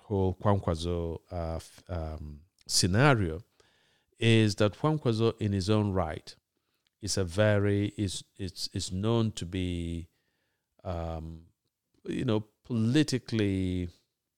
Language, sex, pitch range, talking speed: English, male, 90-110 Hz, 105 wpm